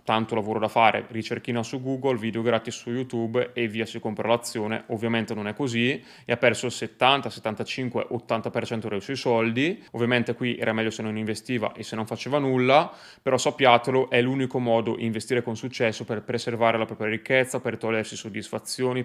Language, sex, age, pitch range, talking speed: Italian, male, 20-39, 110-125 Hz, 180 wpm